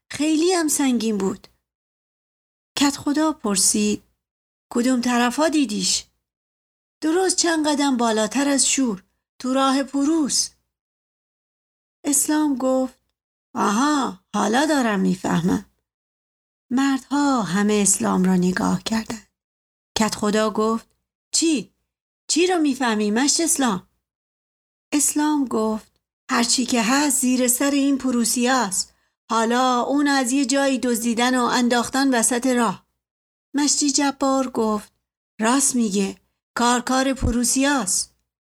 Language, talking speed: Persian, 105 wpm